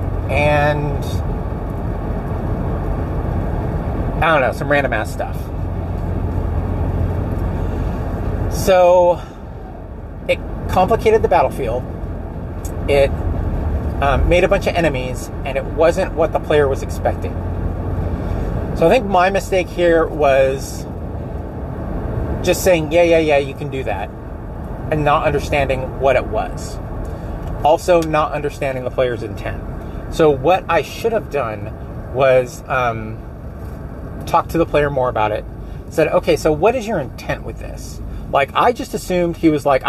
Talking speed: 130 wpm